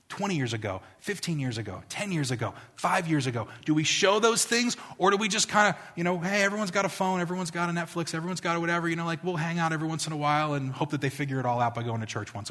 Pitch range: 110-155 Hz